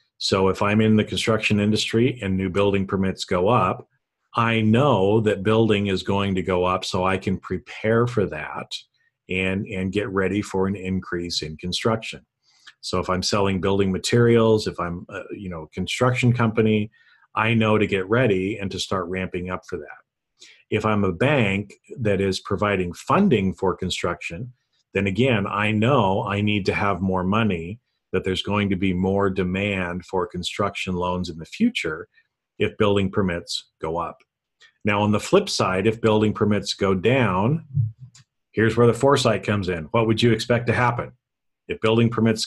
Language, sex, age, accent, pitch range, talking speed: English, male, 40-59, American, 95-115 Hz, 175 wpm